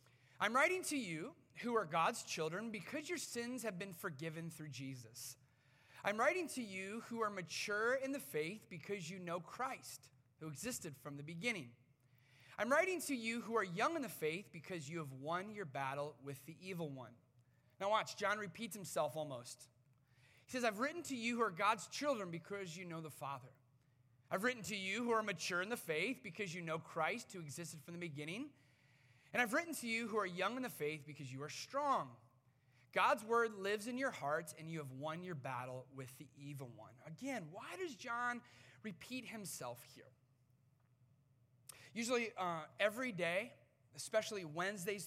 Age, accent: 30-49, American